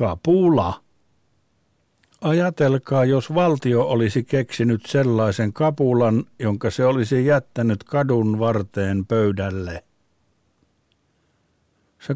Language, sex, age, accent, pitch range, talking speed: Finnish, male, 50-69, native, 105-135 Hz, 80 wpm